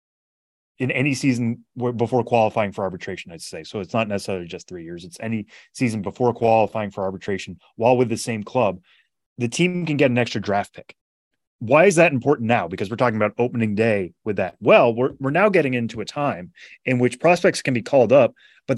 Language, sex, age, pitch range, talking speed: English, male, 30-49, 105-130 Hz, 210 wpm